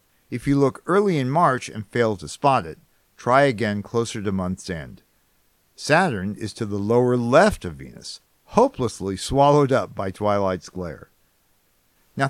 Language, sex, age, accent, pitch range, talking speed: English, male, 50-69, American, 95-140 Hz, 155 wpm